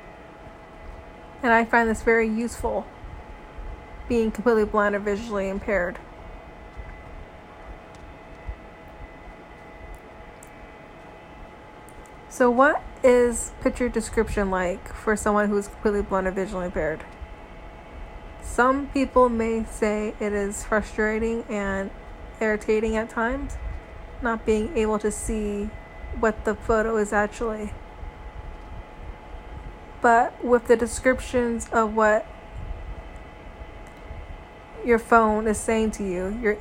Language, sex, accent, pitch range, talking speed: English, female, American, 205-230 Hz, 100 wpm